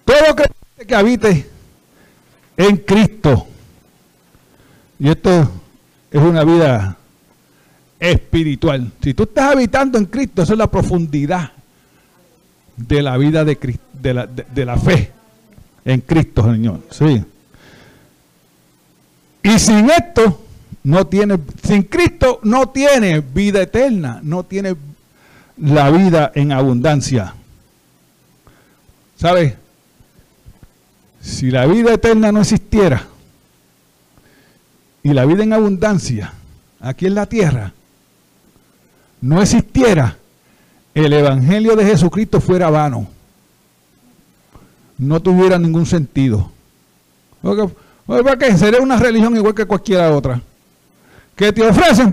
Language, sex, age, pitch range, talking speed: Spanish, male, 50-69, 130-215 Hz, 105 wpm